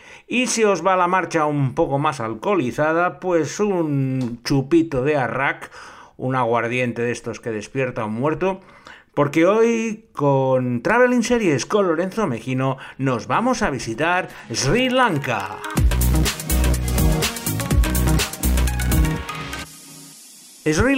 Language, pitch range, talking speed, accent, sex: Spanish, 115-165 Hz, 110 wpm, Spanish, male